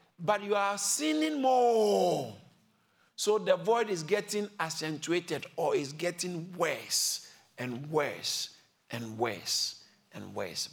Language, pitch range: English, 115-165 Hz